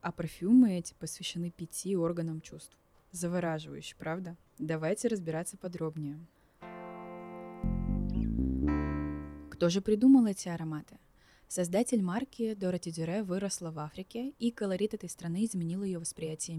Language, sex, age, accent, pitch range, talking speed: Russian, female, 20-39, native, 160-195 Hz, 110 wpm